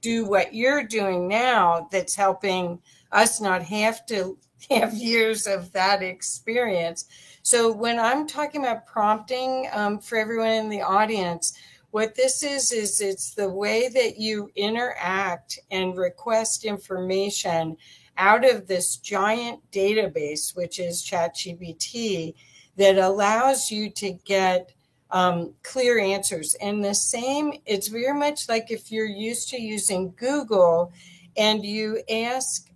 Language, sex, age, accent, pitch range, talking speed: English, female, 50-69, American, 180-230 Hz, 130 wpm